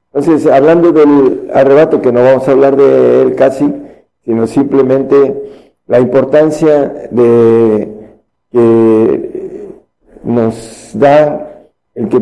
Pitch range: 120-150 Hz